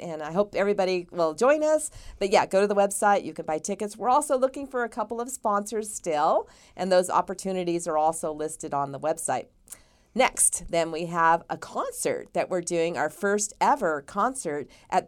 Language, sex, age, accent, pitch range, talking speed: English, female, 40-59, American, 160-200 Hz, 195 wpm